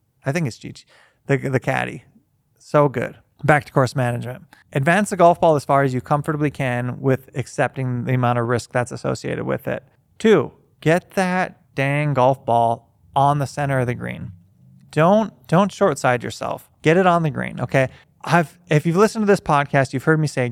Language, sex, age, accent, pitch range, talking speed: English, male, 20-39, American, 125-160 Hz, 195 wpm